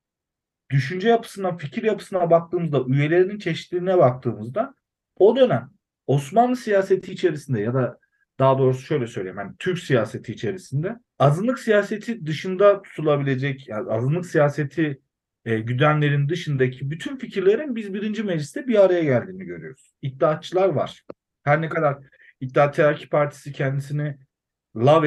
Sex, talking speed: male, 125 wpm